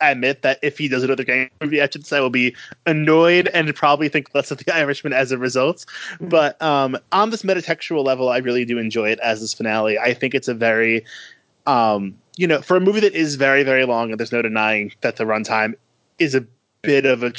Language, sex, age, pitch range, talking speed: English, male, 20-39, 120-155 Hz, 225 wpm